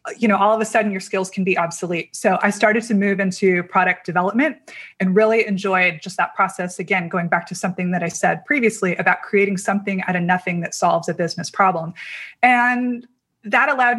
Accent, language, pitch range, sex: American, English, 180-215 Hz, female